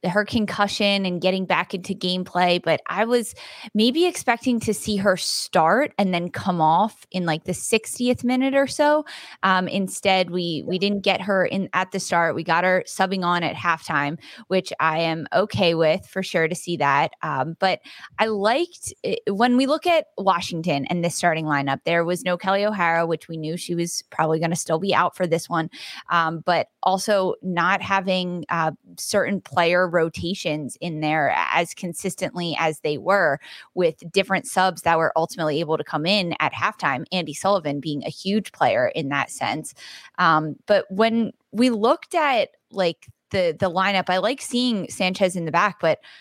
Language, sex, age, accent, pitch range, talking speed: English, female, 20-39, American, 165-200 Hz, 185 wpm